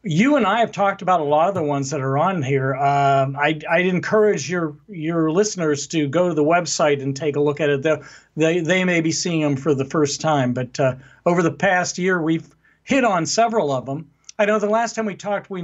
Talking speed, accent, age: 240 wpm, American, 50-69